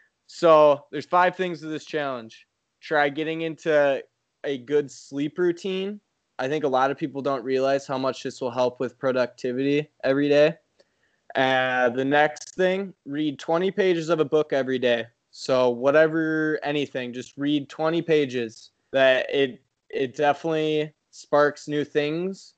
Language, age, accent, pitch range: English, 20-39, American, 130-155 Hz